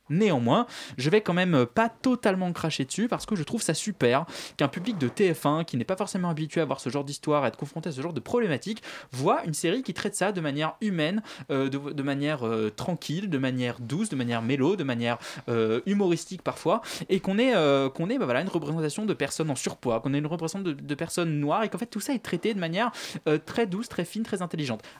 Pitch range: 140-195 Hz